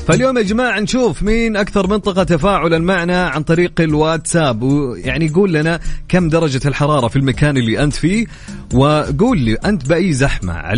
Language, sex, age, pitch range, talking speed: English, male, 30-49, 120-165 Hz, 155 wpm